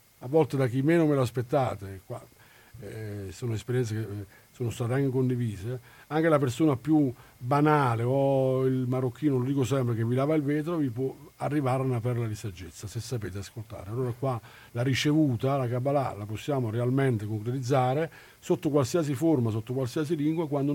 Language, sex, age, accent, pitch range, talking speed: Italian, male, 50-69, native, 115-145 Hz, 175 wpm